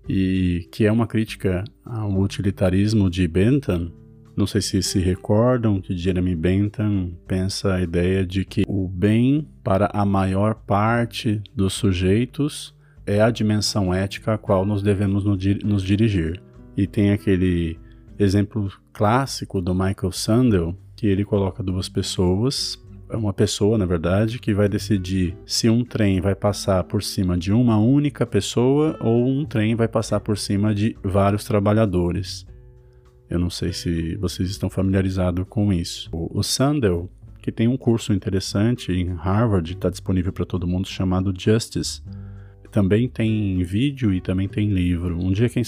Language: Portuguese